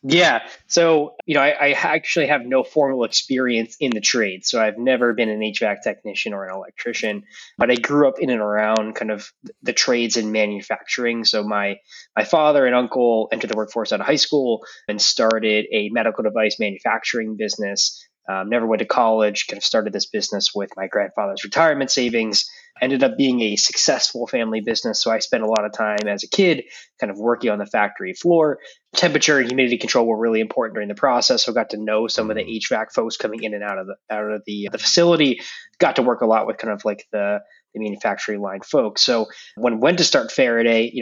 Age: 20-39